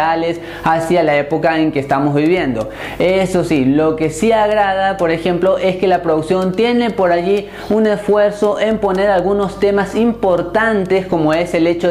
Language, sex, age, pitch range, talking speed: Spanish, male, 20-39, 165-200 Hz, 165 wpm